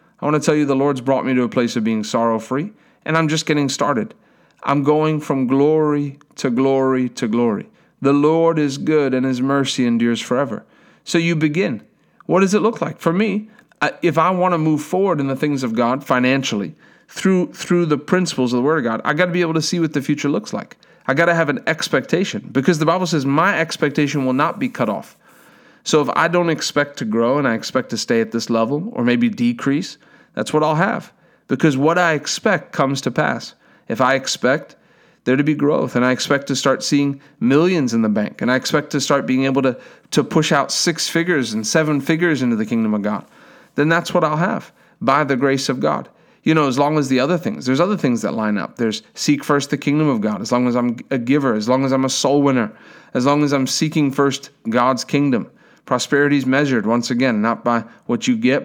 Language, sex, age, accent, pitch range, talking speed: English, male, 40-59, American, 130-165 Hz, 230 wpm